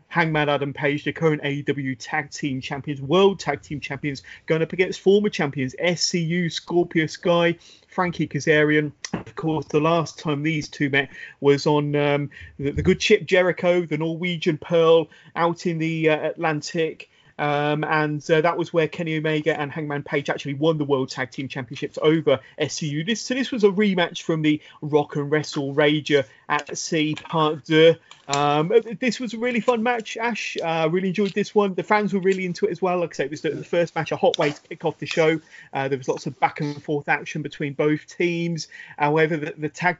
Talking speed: 205 wpm